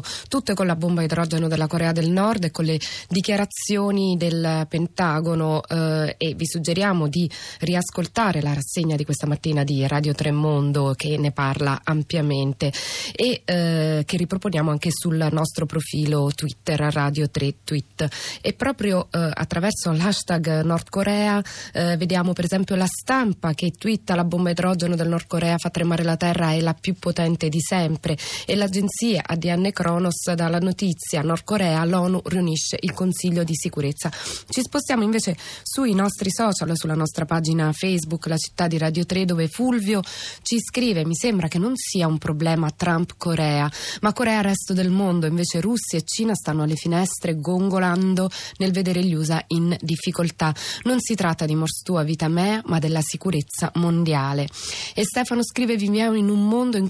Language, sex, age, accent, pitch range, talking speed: Italian, female, 20-39, native, 160-190 Hz, 165 wpm